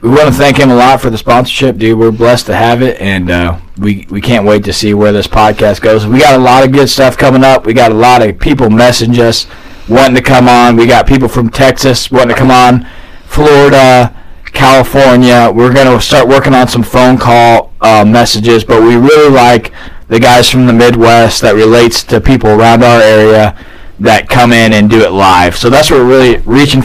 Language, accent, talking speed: English, American, 225 wpm